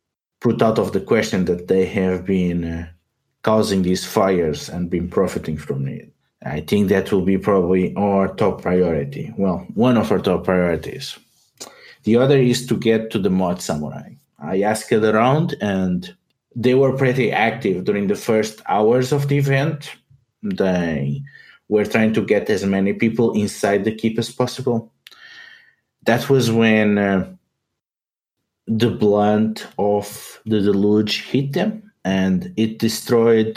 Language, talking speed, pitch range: English, 150 wpm, 95-125 Hz